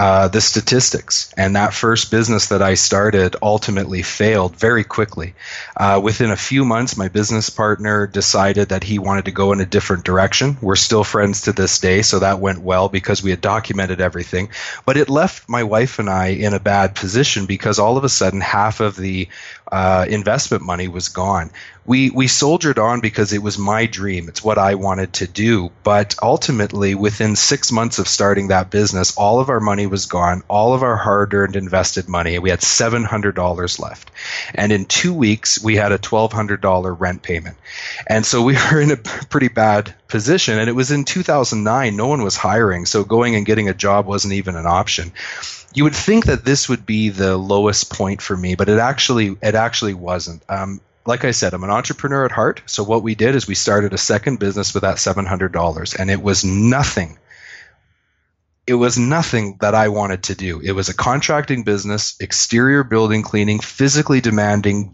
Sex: male